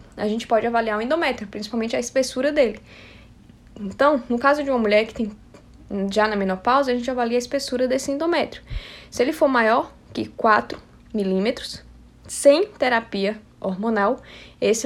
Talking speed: 160 wpm